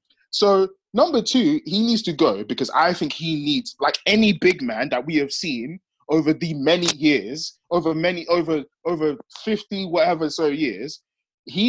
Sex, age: male, 20-39